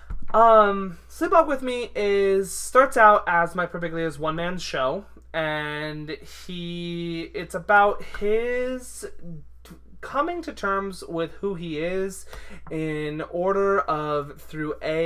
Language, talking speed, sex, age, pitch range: English, 125 wpm, male, 20-39, 150-205 Hz